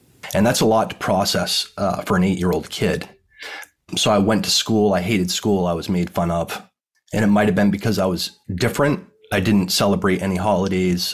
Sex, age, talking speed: male, 30-49, 205 wpm